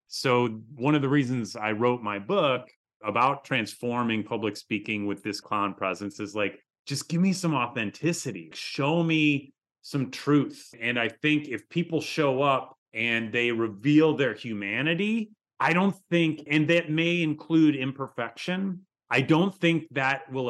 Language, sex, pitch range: English, male, 110-150 Hz